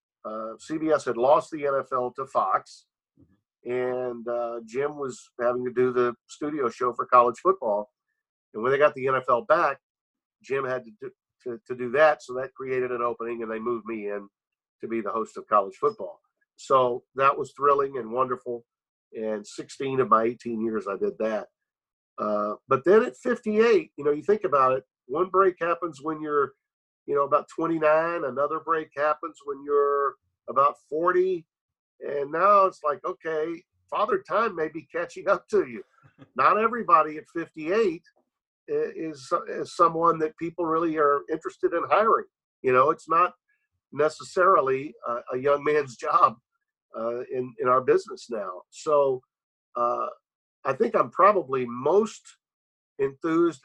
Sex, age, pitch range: male, 50-69, 125-175 Hz